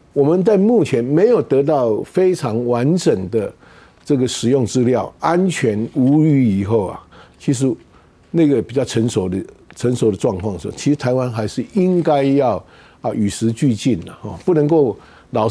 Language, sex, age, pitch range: Chinese, male, 50-69, 115-165 Hz